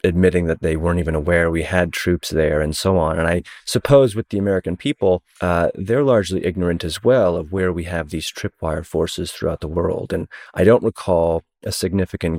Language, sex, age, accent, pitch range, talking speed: English, male, 30-49, American, 80-100 Hz, 205 wpm